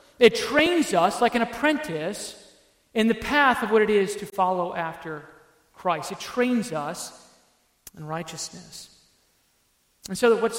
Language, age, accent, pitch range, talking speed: English, 40-59, American, 185-235 Hz, 140 wpm